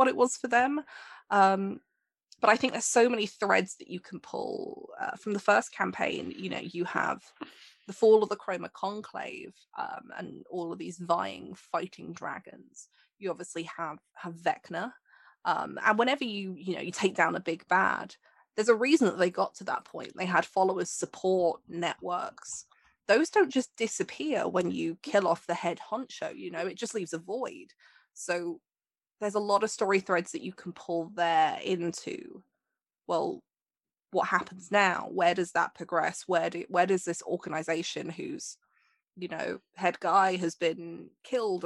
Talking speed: 175 wpm